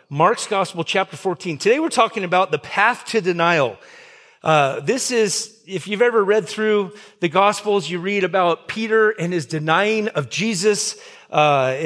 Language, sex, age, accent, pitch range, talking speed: English, male, 40-59, American, 155-210 Hz, 160 wpm